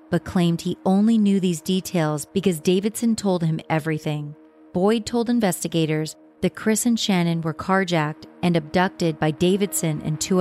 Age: 30-49